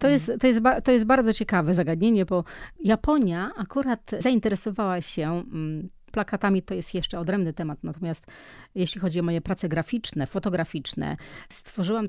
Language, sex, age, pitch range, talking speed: Polish, female, 30-49, 165-205 Hz, 145 wpm